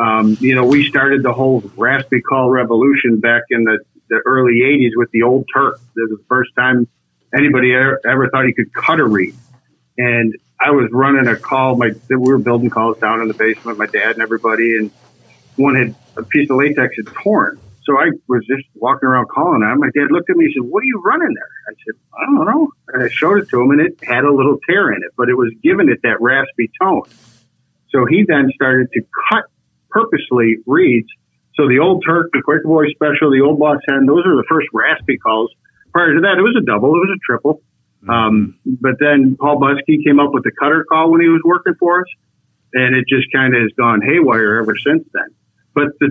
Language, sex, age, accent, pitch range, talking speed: English, male, 50-69, American, 115-150 Hz, 230 wpm